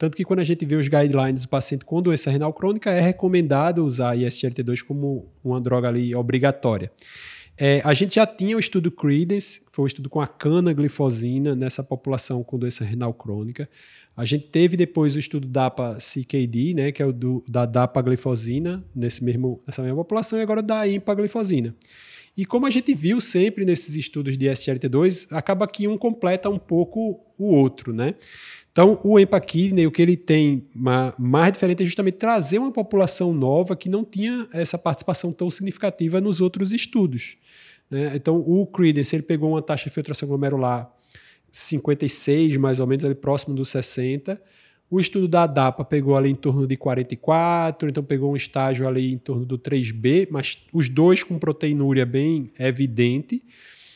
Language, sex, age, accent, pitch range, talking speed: Portuguese, male, 20-39, Brazilian, 130-180 Hz, 175 wpm